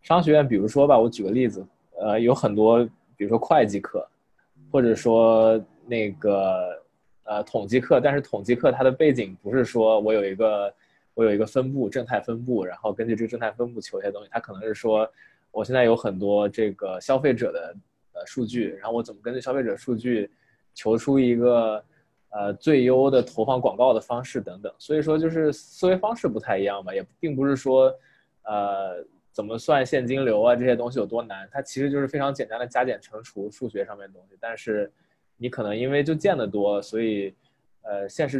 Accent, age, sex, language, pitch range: native, 20-39, male, Chinese, 110-140 Hz